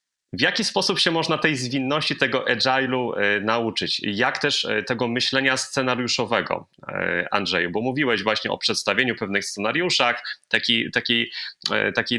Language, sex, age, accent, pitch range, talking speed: Polish, male, 30-49, native, 115-145 Hz, 120 wpm